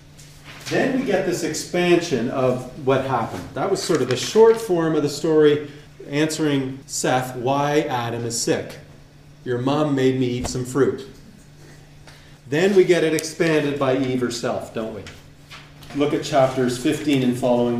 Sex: male